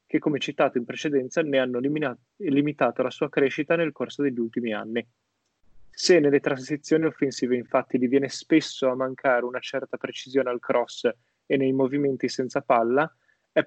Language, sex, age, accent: Italian, male, 20-39, native